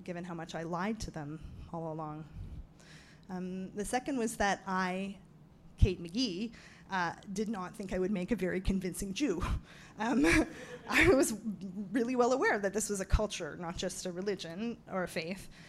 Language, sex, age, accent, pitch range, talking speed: English, female, 20-39, American, 180-220 Hz, 170 wpm